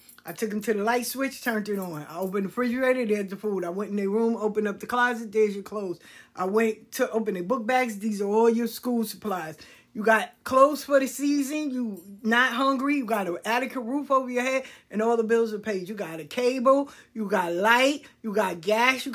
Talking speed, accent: 240 wpm, American